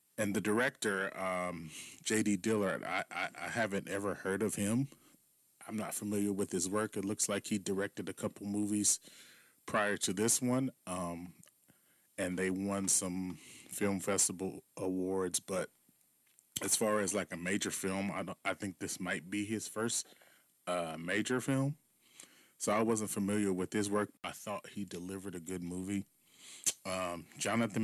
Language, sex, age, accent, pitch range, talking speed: English, male, 30-49, American, 95-110 Hz, 165 wpm